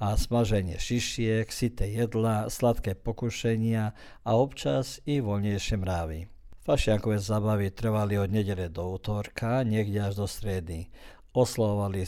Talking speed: 120 wpm